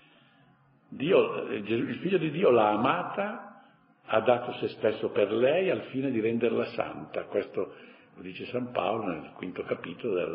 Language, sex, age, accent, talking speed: Italian, male, 60-79, native, 155 wpm